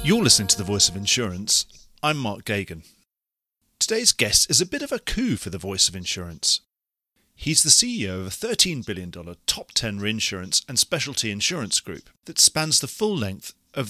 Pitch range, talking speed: 95-150 Hz, 185 wpm